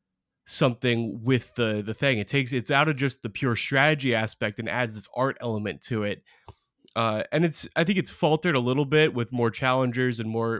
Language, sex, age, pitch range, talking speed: English, male, 20-39, 115-140 Hz, 210 wpm